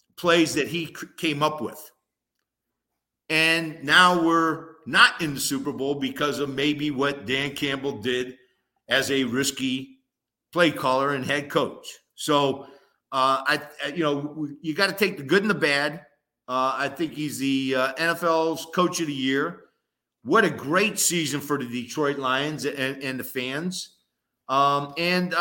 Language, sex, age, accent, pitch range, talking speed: English, male, 50-69, American, 135-175 Hz, 160 wpm